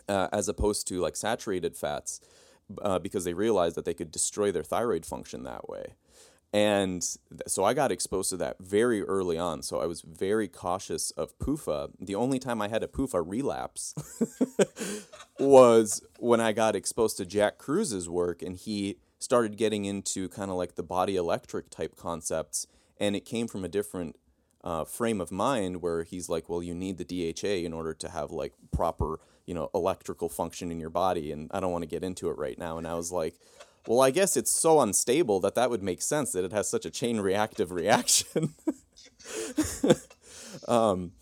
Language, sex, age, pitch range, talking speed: English, male, 30-49, 85-120 Hz, 190 wpm